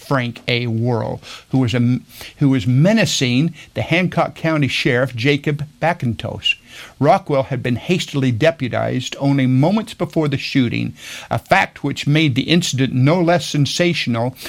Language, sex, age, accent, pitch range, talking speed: English, male, 50-69, American, 120-150 Hz, 135 wpm